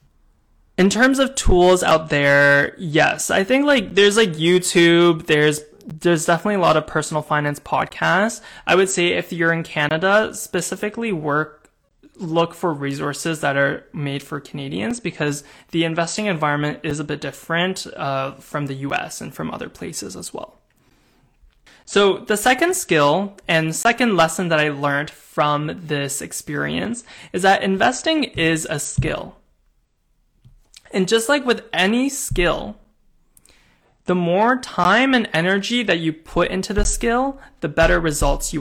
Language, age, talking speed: English, 20-39, 150 wpm